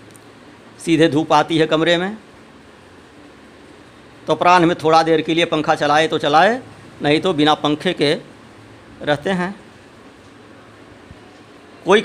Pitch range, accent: 155-195 Hz, native